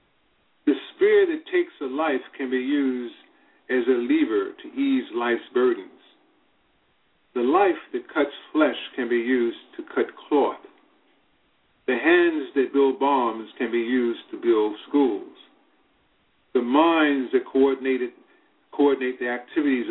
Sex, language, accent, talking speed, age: male, English, American, 135 wpm, 50-69